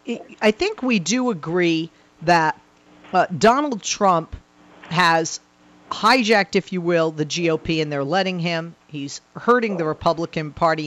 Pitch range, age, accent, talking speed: 165-220 Hz, 40-59, American, 140 wpm